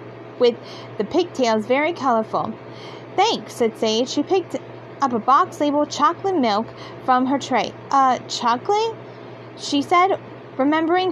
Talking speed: 130 wpm